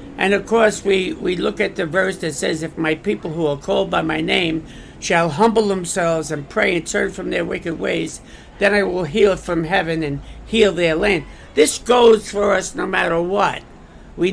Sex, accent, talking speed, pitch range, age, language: male, American, 205 wpm, 160-205 Hz, 60-79, English